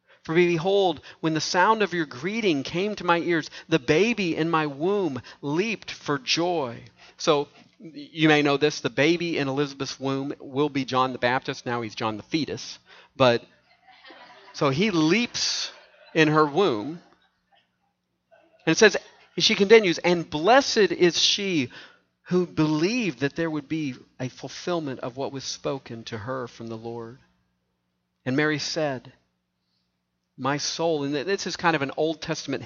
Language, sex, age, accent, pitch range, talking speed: English, male, 40-59, American, 125-165 Hz, 160 wpm